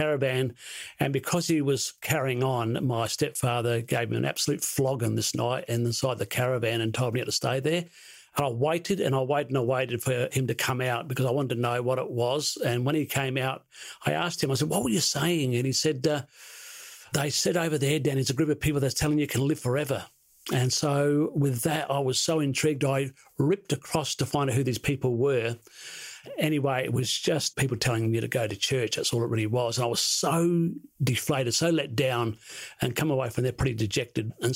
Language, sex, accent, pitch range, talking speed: English, male, British, 120-145 Hz, 225 wpm